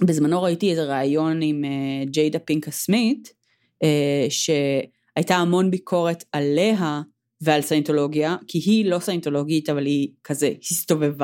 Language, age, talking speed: Hebrew, 30-49, 115 wpm